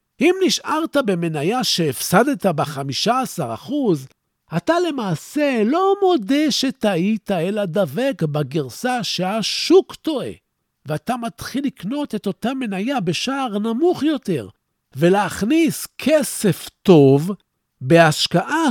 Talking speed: 95 wpm